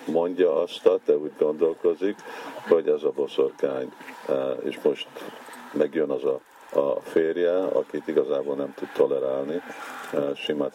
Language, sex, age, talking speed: Hungarian, male, 50-69, 135 wpm